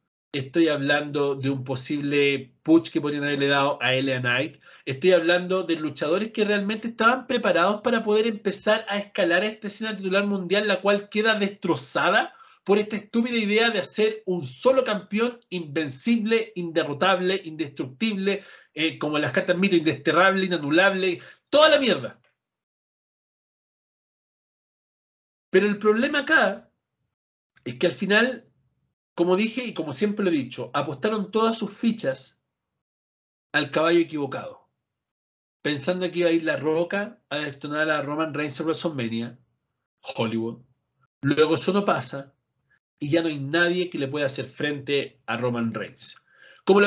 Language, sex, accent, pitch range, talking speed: Spanish, male, Argentinian, 145-205 Hz, 145 wpm